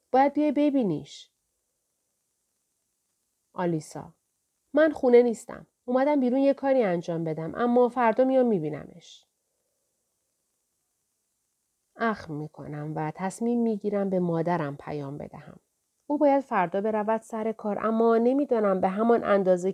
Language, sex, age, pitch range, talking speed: Persian, female, 40-59, 165-250 Hz, 120 wpm